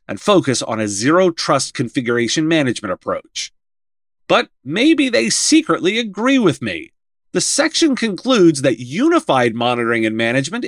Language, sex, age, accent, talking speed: English, male, 40-59, American, 130 wpm